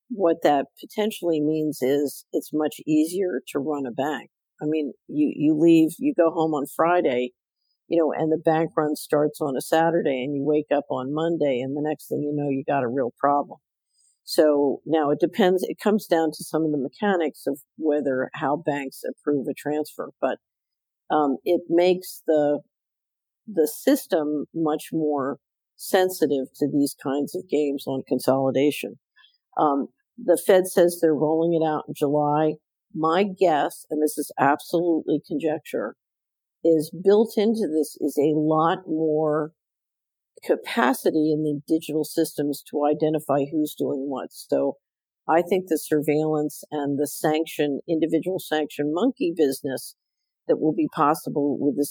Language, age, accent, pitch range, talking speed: English, 50-69, American, 145-170 Hz, 160 wpm